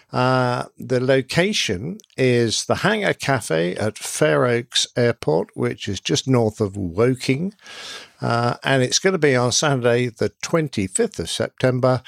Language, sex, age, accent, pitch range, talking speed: English, male, 50-69, British, 110-140 Hz, 145 wpm